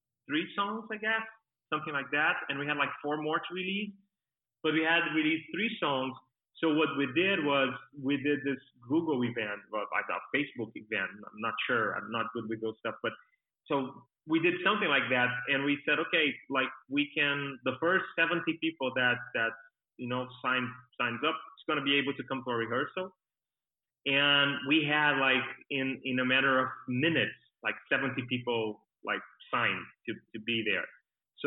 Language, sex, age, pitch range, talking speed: English, male, 30-49, 125-160 Hz, 190 wpm